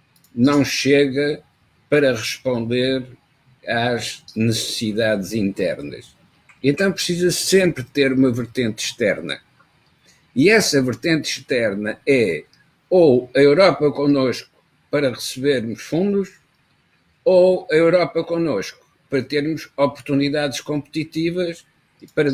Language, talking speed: Portuguese, 95 wpm